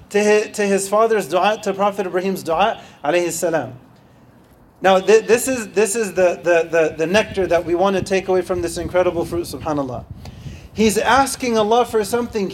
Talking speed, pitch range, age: 170 wpm, 180-220 Hz, 30-49